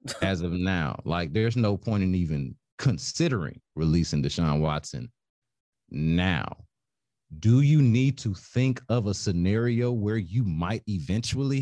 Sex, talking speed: male, 135 wpm